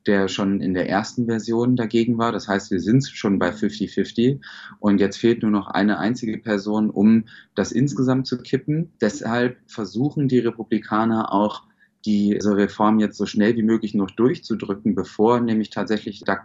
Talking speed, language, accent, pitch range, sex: 170 wpm, German, German, 100-115 Hz, male